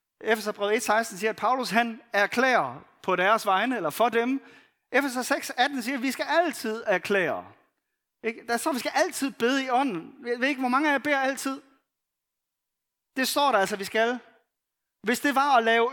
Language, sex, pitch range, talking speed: Danish, male, 205-275 Hz, 180 wpm